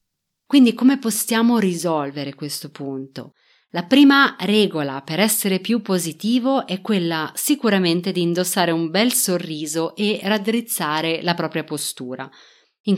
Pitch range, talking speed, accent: 165-225 Hz, 125 wpm, native